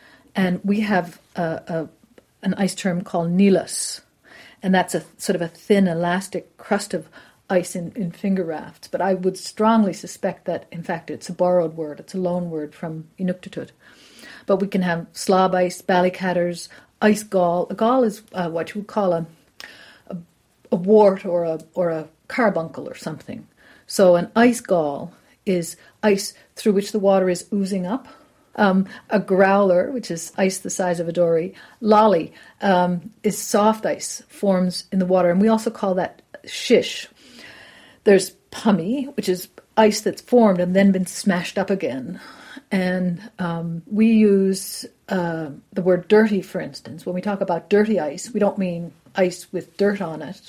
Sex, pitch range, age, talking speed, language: female, 175-205 Hz, 40-59, 175 wpm, English